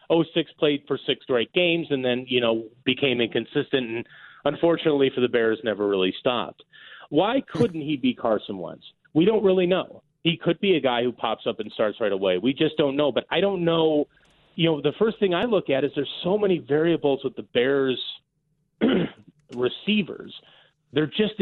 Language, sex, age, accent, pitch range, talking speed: English, male, 30-49, American, 130-175 Hz, 195 wpm